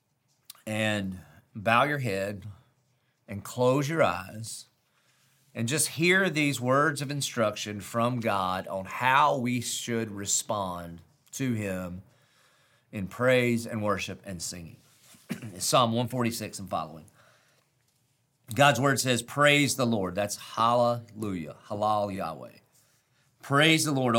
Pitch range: 110-135 Hz